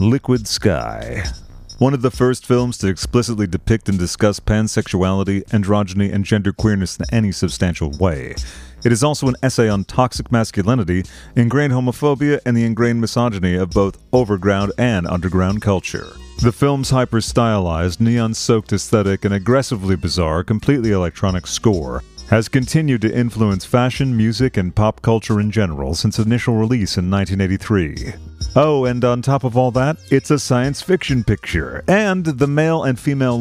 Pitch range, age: 95-130 Hz, 40-59